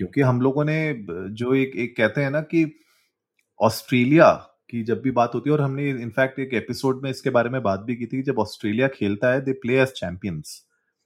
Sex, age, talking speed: male, 30-49, 110 wpm